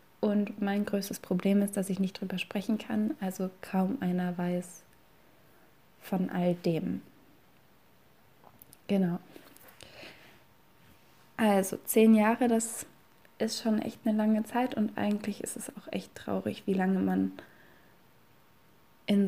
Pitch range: 190-225 Hz